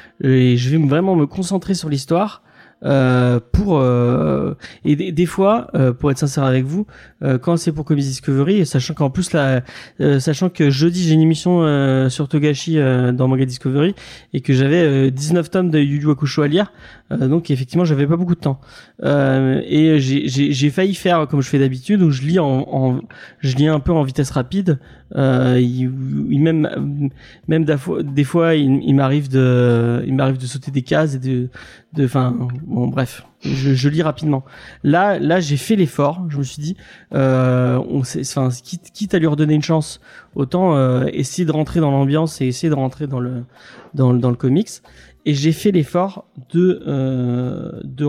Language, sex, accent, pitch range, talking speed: French, male, French, 130-160 Hz, 200 wpm